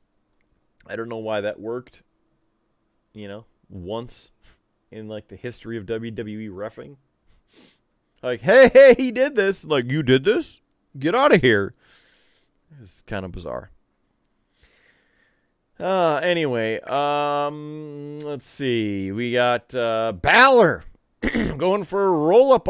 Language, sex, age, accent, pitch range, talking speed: English, male, 30-49, American, 120-195 Hz, 125 wpm